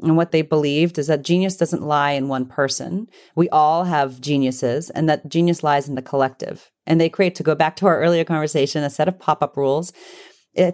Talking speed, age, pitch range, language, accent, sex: 220 wpm, 30-49, 140-180 Hz, English, American, female